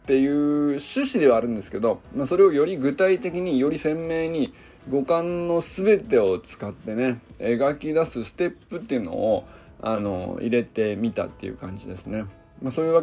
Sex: male